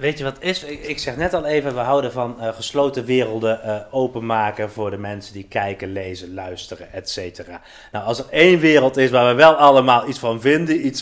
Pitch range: 110-155 Hz